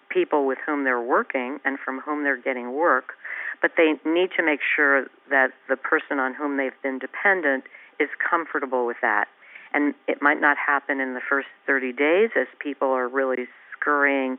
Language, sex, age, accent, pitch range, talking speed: English, female, 50-69, American, 135-165 Hz, 185 wpm